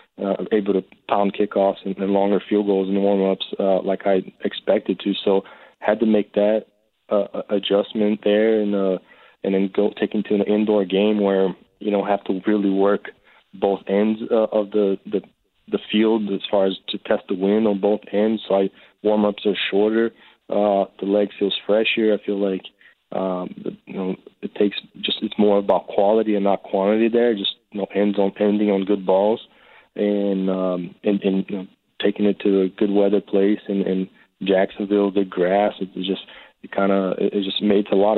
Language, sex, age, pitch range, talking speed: English, male, 20-39, 95-105 Hz, 205 wpm